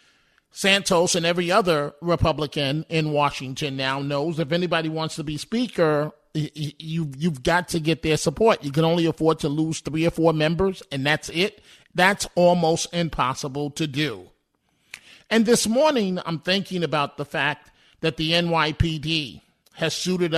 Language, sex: English, male